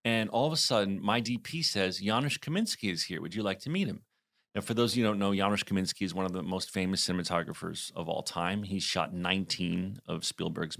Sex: male